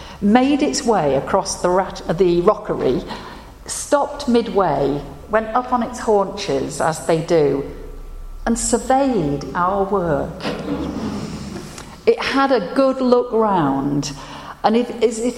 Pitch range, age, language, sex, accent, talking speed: 155-215 Hz, 50-69, English, female, British, 120 wpm